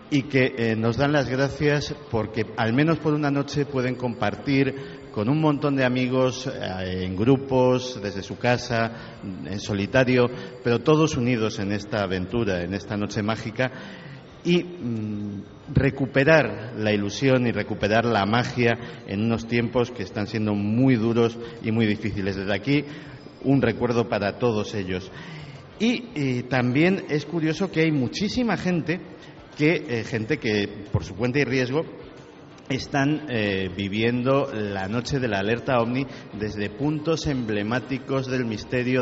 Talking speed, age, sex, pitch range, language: 150 wpm, 50-69, male, 110-140 Hz, Spanish